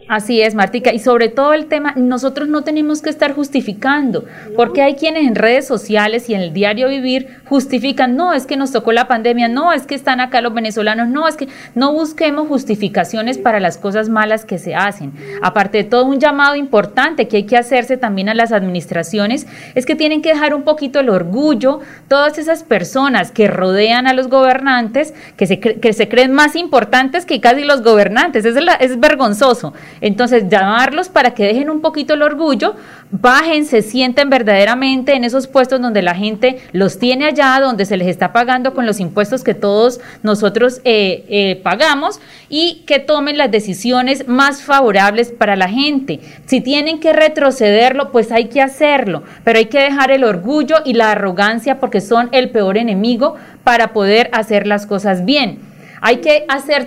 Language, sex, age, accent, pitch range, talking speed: Spanish, female, 30-49, Colombian, 215-280 Hz, 190 wpm